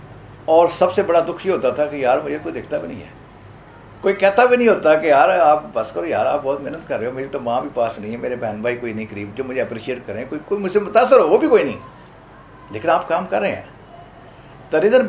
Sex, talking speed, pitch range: male, 80 wpm, 120-155 Hz